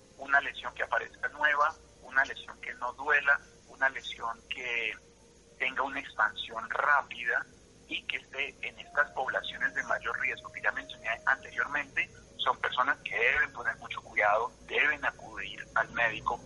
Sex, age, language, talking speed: male, 50-69, Spanish, 150 wpm